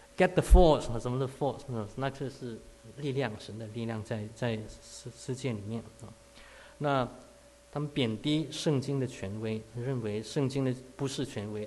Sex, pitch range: male, 115-145 Hz